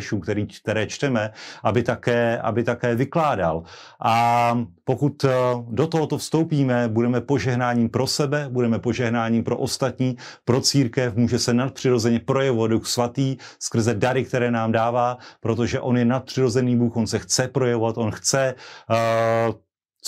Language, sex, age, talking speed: Slovak, male, 30-49, 135 wpm